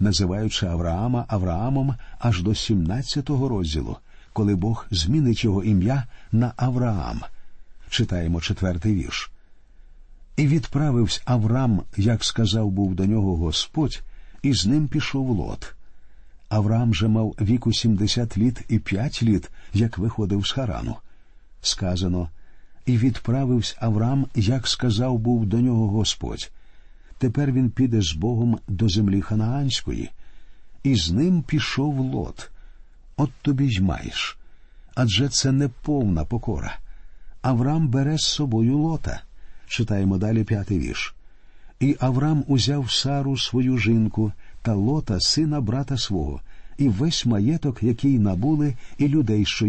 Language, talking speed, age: Ukrainian, 125 wpm, 50-69